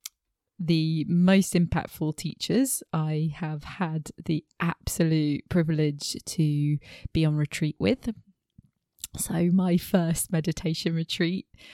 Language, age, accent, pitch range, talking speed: English, 20-39, British, 155-185 Hz, 100 wpm